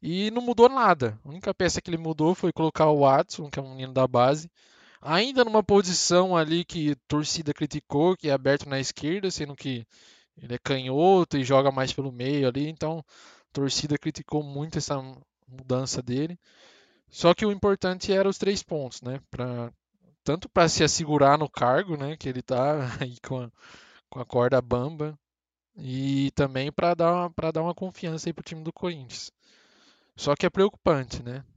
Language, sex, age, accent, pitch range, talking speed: Portuguese, male, 20-39, Brazilian, 125-160 Hz, 185 wpm